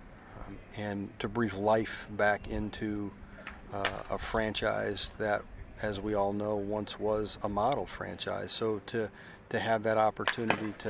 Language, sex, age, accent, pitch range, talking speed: English, male, 40-59, American, 105-130 Hz, 145 wpm